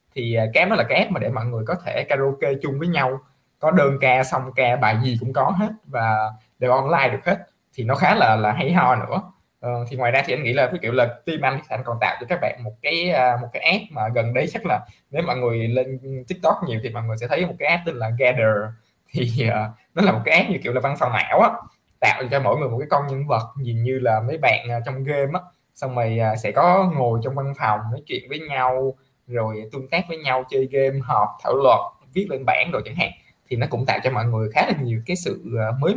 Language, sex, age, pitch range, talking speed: Vietnamese, male, 20-39, 115-145 Hz, 260 wpm